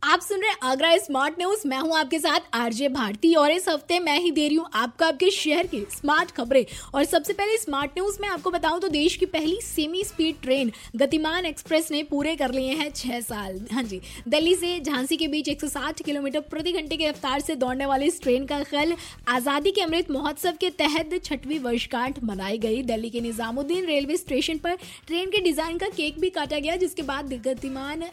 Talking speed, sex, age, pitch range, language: 210 wpm, female, 20-39, 250-320 Hz, Hindi